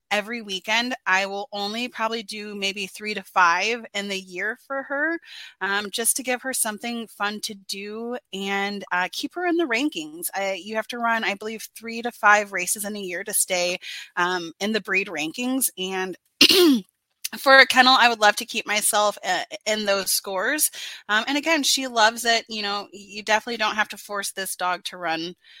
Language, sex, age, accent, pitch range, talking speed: English, female, 30-49, American, 200-250 Hz, 195 wpm